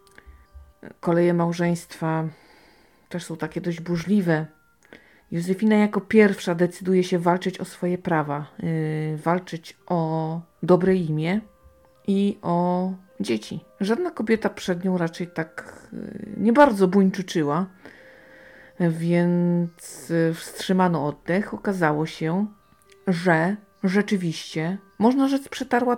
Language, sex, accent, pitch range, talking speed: Polish, female, native, 165-210 Hz, 95 wpm